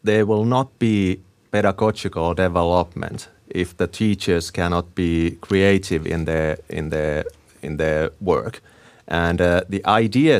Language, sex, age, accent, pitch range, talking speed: Finnish, male, 30-49, native, 90-115 Hz, 135 wpm